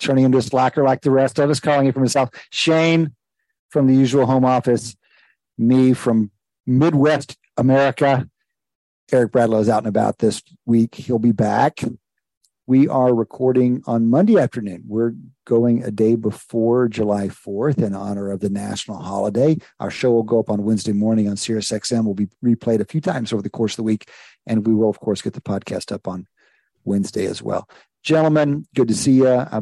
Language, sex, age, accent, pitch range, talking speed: English, male, 50-69, American, 110-130 Hz, 190 wpm